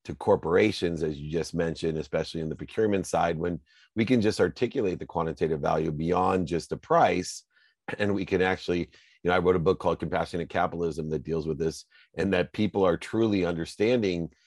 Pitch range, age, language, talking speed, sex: 80-95 Hz, 40-59, English, 190 wpm, male